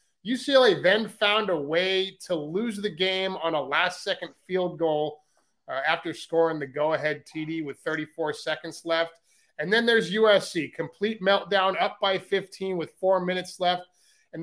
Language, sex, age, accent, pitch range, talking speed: English, male, 30-49, American, 150-180 Hz, 160 wpm